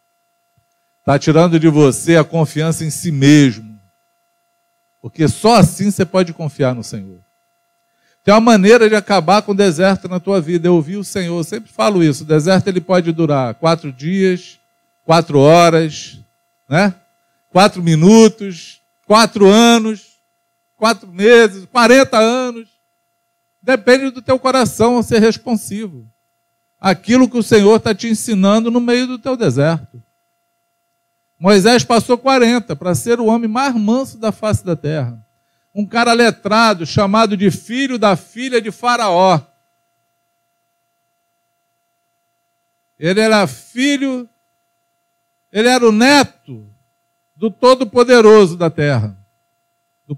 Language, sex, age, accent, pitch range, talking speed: Portuguese, male, 50-69, Brazilian, 170-245 Hz, 130 wpm